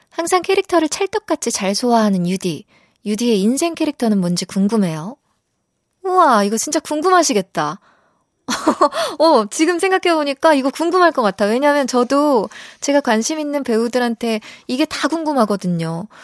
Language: Korean